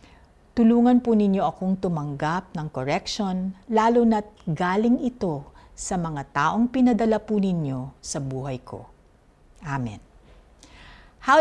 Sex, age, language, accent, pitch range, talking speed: female, 50-69, Filipino, native, 145-235 Hz, 115 wpm